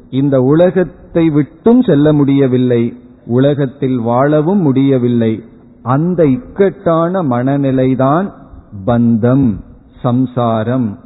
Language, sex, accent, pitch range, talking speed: Tamil, male, native, 120-155 Hz, 70 wpm